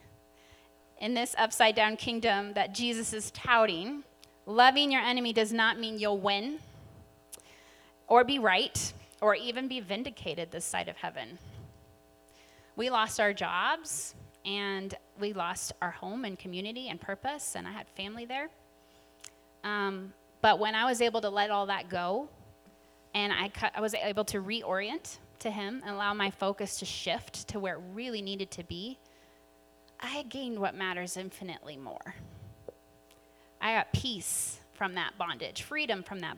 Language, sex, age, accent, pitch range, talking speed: English, female, 30-49, American, 150-230 Hz, 155 wpm